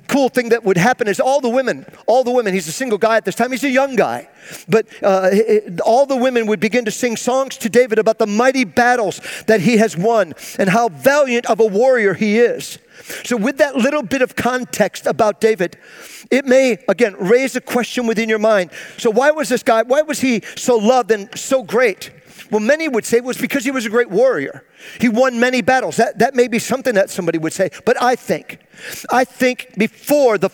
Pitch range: 210-250 Hz